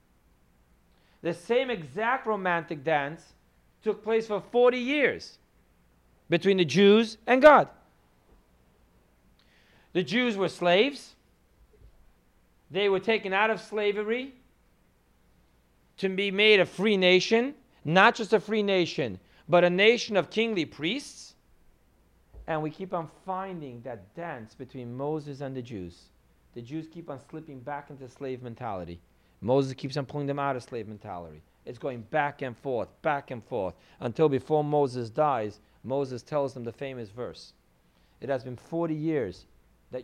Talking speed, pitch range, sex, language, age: 145 wpm, 110-170 Hz, male, English, 40-59